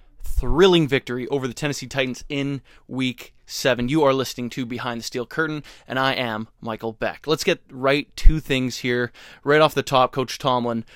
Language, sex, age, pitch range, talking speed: English, male, 20-39, 120-140 Hz, 185 wpm